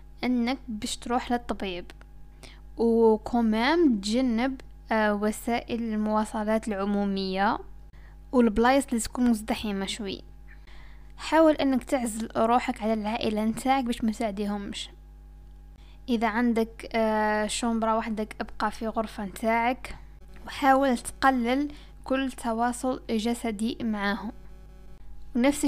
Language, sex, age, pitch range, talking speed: Arabic, female, 10-29, 220-250 Hz, 90 wpm